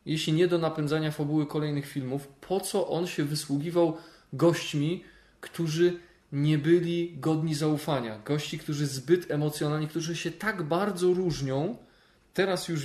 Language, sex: Polish, male